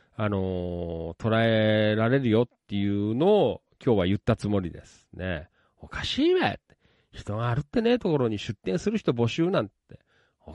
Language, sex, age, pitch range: Japanese, male, 40-59, 100-165 Hz